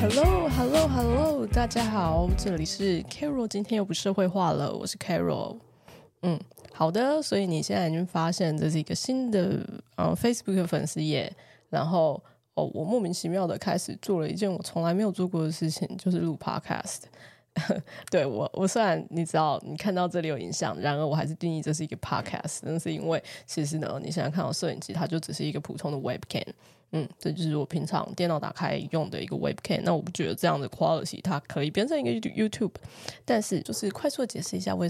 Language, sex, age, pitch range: Chinese, female, 20-39, 160-200 Hz